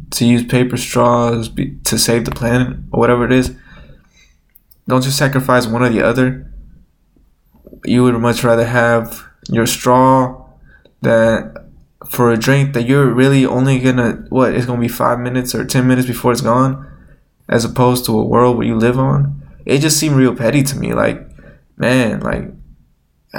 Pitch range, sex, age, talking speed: 120-145 Hz, male, 10-29, 175 wpm